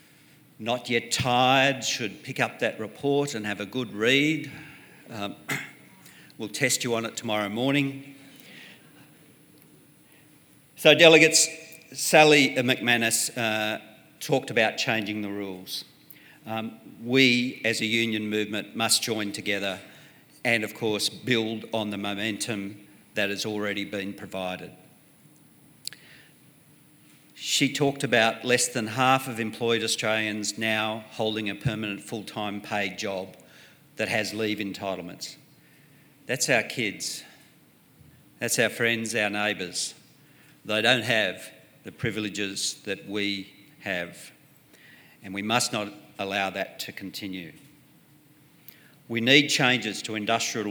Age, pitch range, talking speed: 50-69, 105-130 Hz, 120 wpm